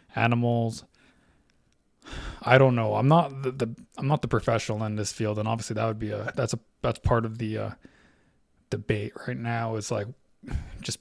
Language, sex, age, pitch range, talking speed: English, male, 20-39, 110-130 Hz, 185 wpm